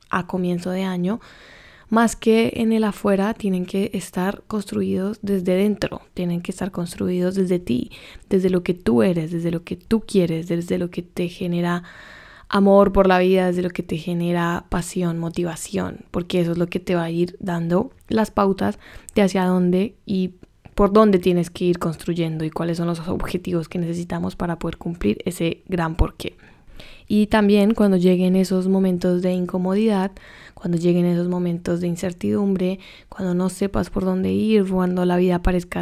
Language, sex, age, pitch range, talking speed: Spanish, female, 10-29, 175-200 Hz, 180 wpm